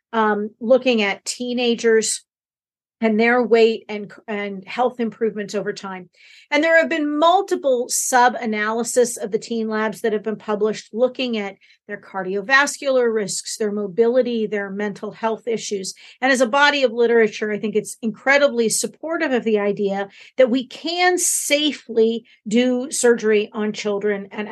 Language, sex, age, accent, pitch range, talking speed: English, female, 50-69, American, 210-255 Hz, 150 wpm